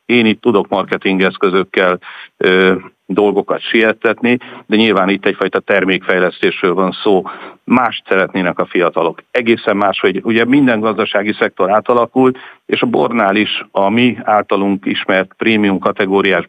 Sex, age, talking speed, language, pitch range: male, 50-69, 130 wpm, Hungarian, 95-110 Hz